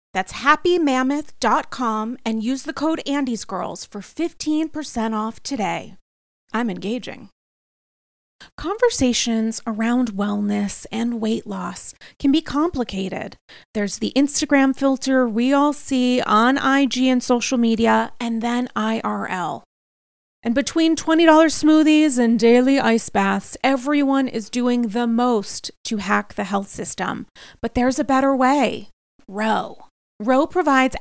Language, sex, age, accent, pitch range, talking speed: English, female, 30-49, American, 225-275 Hz, 120 wpm